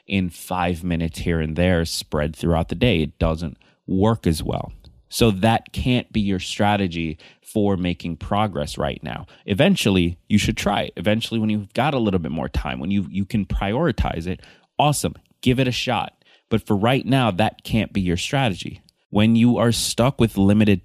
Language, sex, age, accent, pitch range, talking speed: English, male, 30-49, American, 85-110 Hz, 185 wpm